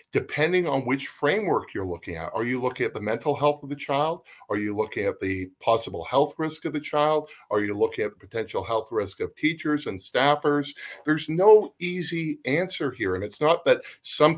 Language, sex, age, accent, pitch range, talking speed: English, male, 50-69, American, 105-150 Hz, 210 wpm